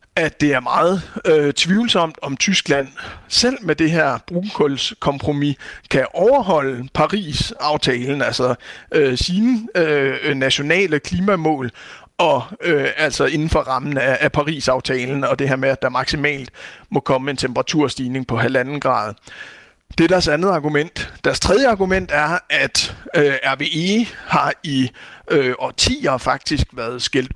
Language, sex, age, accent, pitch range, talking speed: Danish, male, 60-79, native, 135-185 Hz, 140 wpm